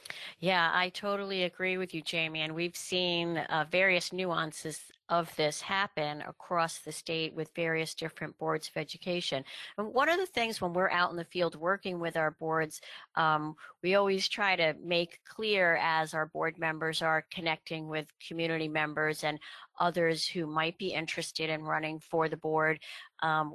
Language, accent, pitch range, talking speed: English, American, 160-190 Hz, 175 wpm